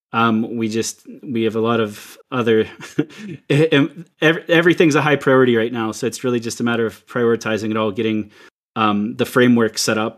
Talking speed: 185 wpm